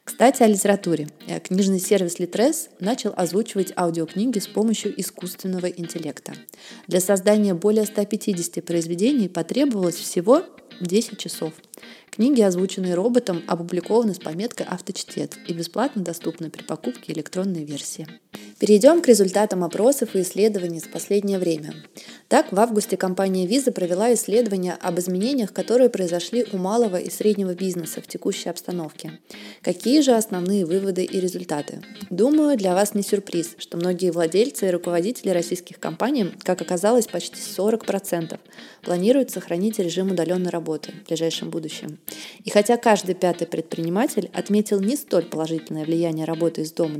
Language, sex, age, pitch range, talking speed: Russian, female, 20-39, 170-220 Hz, 135 wpm